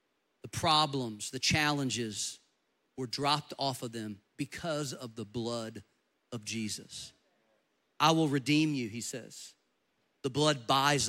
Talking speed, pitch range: 130 wpm, 120-155 Hz